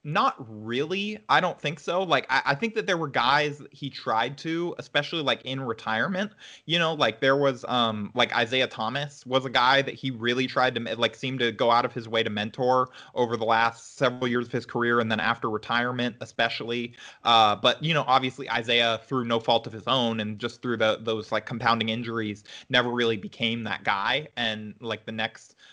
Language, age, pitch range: English, 20-39, 115-140 Hz